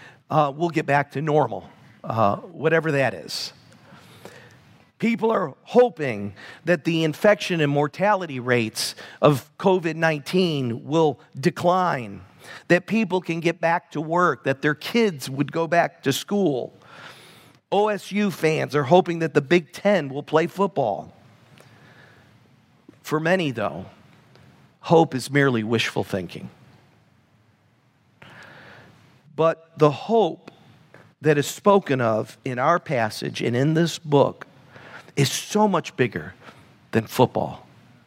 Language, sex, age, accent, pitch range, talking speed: English, male, 50-69, American, 130-175 Hz, 120 wpm